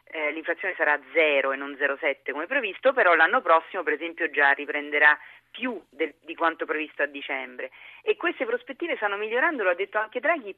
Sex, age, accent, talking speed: female, 40-59, native, 180 wpm